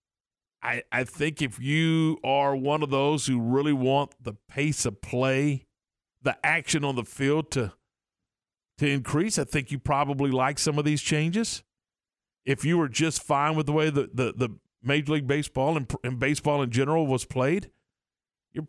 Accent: American